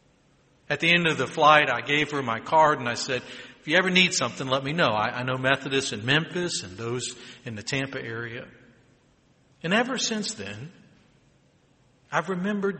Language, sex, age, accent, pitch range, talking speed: English, male, 60-79, American, 120-165 Hz, 190 wpm